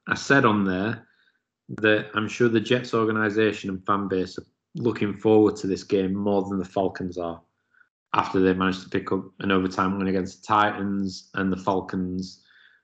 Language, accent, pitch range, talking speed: English, British, 95-110 Hz, 180 wpm